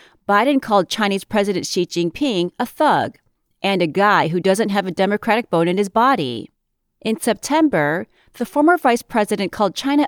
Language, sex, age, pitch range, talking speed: English, female, 30-49, 180-260 Hz, 165 wpm